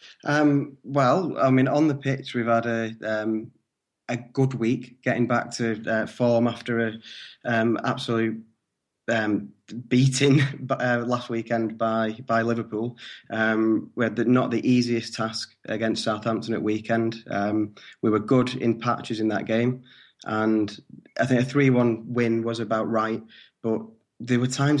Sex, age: male, 20-39